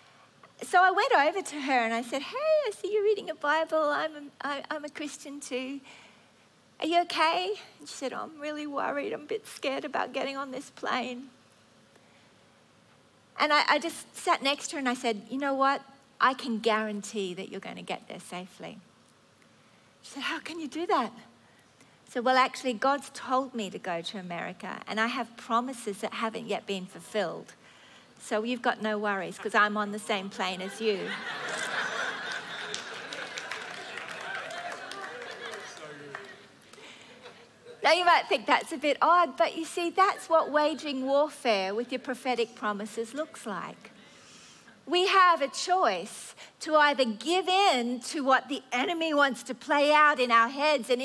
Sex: female